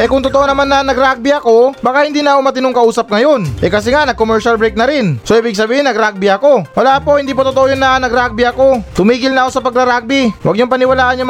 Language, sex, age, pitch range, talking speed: Filipino, male, 20-39, 215-245 Hz, 235 wpm